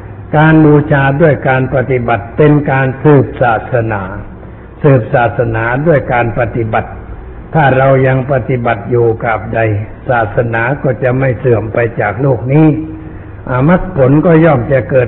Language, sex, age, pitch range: Thai, male, 60-79, 115-145 Hz